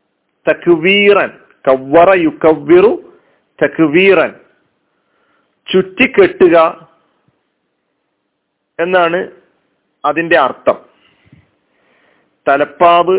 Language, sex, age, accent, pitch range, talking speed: Malayalam, male, 40-59, native, 150-195 Hz, 55 wpm